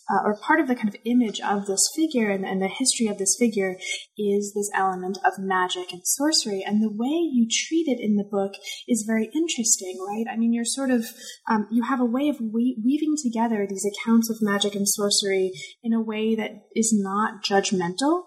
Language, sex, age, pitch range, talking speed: English, female, 20-39, 200-245 Hz, 210 wpm